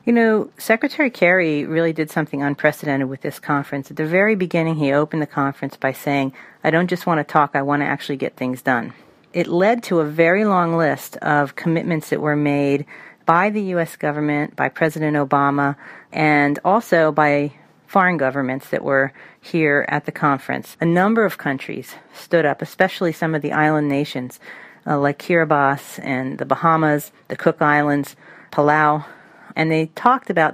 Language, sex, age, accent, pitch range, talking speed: English, female, 40-59, American, 145-170 Hz, 175 wpm